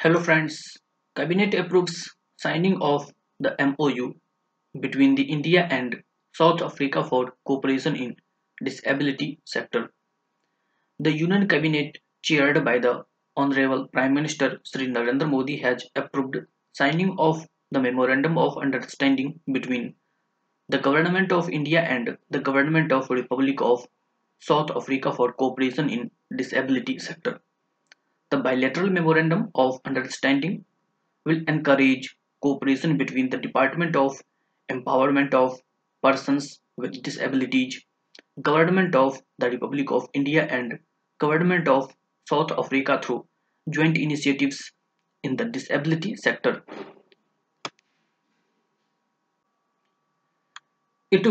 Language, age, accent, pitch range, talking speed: English, 20-39, Indian, 135-165 Hz, 110 wpm